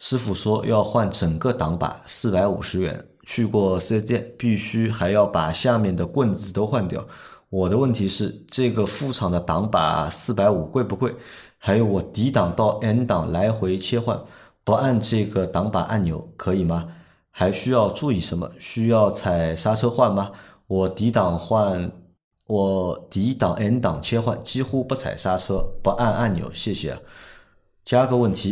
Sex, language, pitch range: male, Chinese, 95-120 Hz